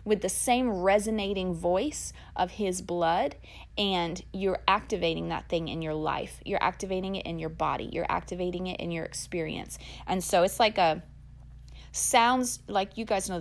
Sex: female